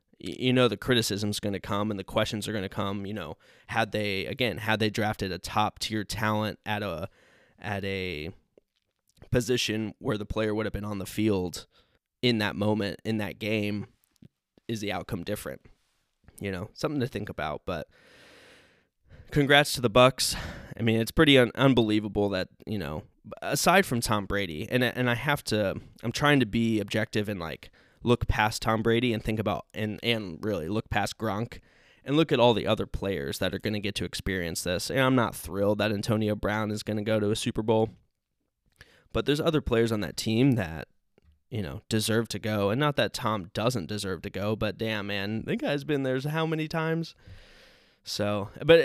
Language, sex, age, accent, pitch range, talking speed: English, male, 20-39, American, 100-120 Hz, 200 wpm